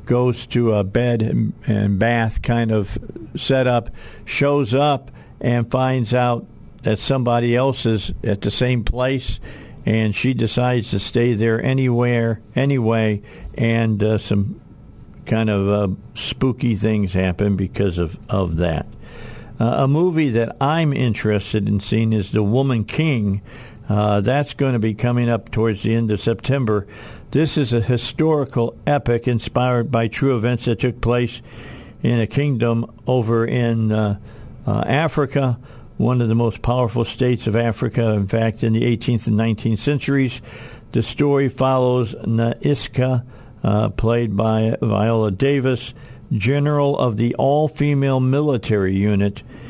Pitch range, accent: 110-130 Hz, American